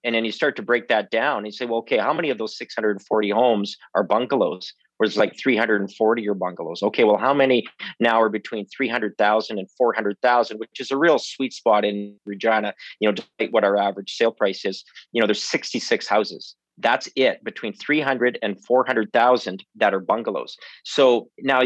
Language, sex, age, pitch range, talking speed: English, male, 40-59, 105-125 Hz, 200 wpm